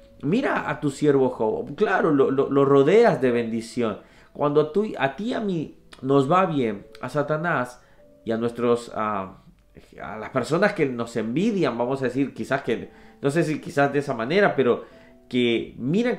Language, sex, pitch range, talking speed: Spanish, male, 110-155 Hz, 180 wpm